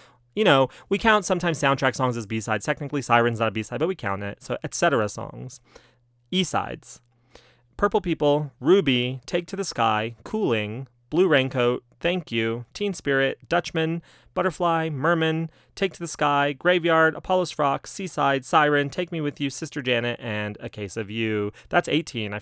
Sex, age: male, 30-49